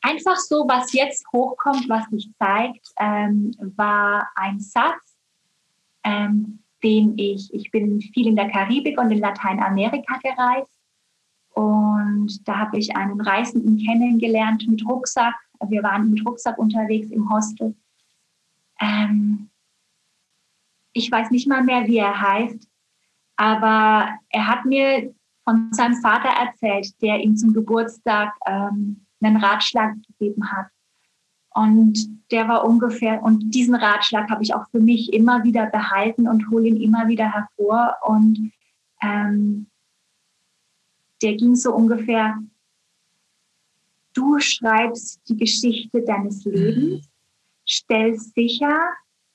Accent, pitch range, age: German, 210-235 Hz, 20-39